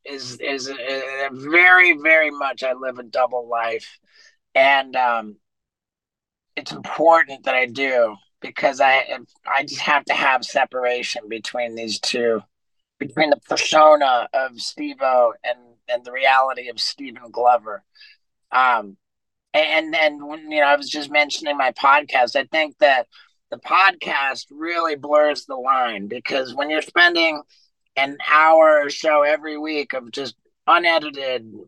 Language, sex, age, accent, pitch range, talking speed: English, male, 30-49, American, 130-165 Hz, 140 wpm